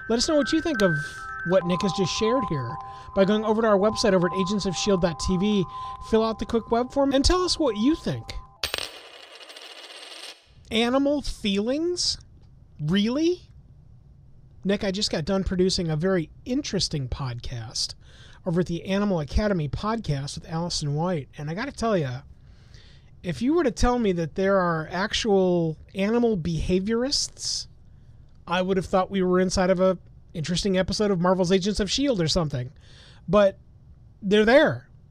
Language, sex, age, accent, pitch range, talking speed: English, male, 30-49, American, 170-225 Hz, 160 wpm